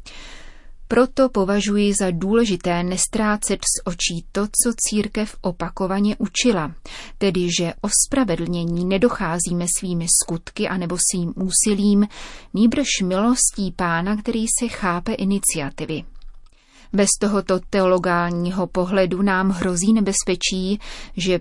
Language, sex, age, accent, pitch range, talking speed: Czech, female, 30-49, native, 180-215 Hz, 105 wpm